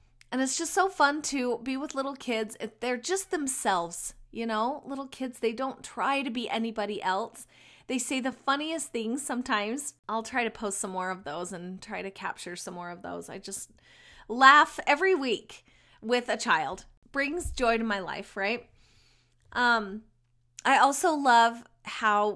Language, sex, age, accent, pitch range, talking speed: English, female, 30-49, American, 205-280 Hz, 175 wpm